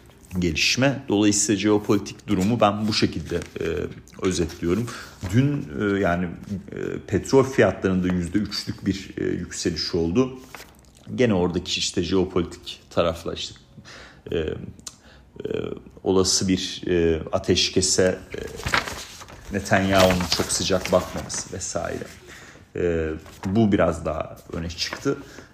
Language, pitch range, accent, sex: Turkish, 90-105 Hz, native, male